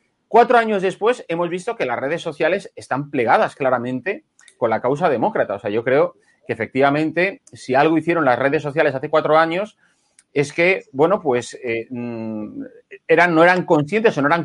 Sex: male